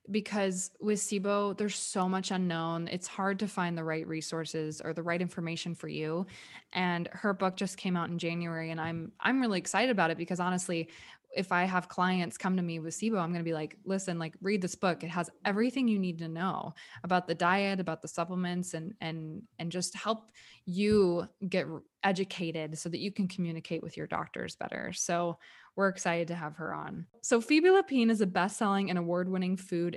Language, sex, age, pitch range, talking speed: English, female, 20-39, 170-205 Hz, 205 wpm